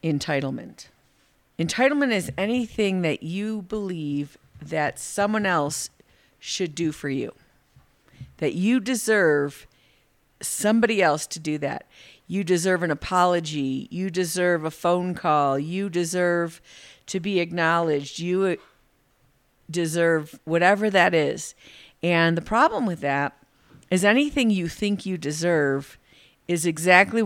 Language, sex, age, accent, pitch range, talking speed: English, female, 50-69, American, 145-185 Hz, 120 wpm